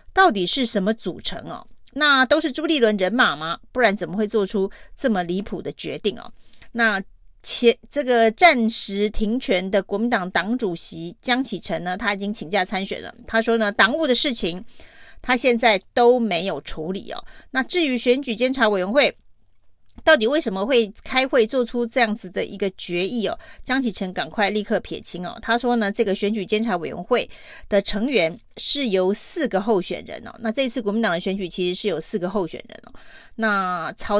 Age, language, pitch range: 30-49, Chinese, 195-245 Hz